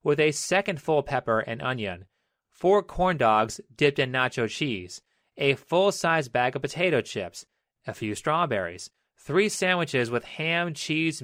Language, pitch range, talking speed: English, 125-165 Hz, 150 wpm